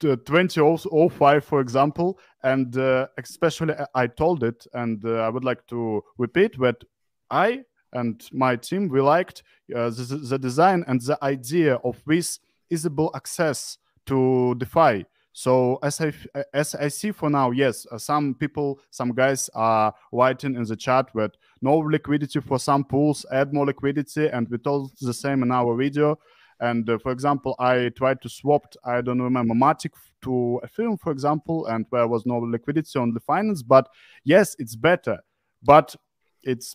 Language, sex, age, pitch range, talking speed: Russian, male, 20-39, 120-155 Hz, 165 wpm